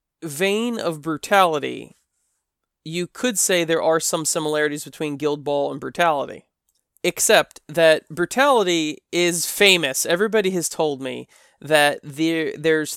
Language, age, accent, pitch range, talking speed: English, 20-39, American, 145-175 Hz, 120 wpm